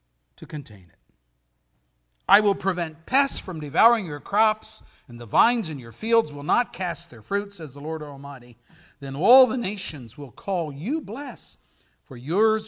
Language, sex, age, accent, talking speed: English, male, 60-79, American, 170 wpm